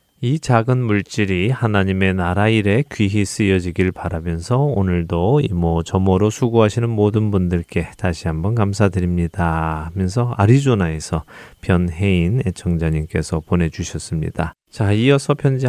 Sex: male